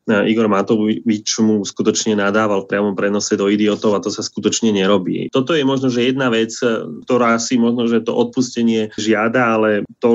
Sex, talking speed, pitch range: male, 175 wpm, 105-120 Hz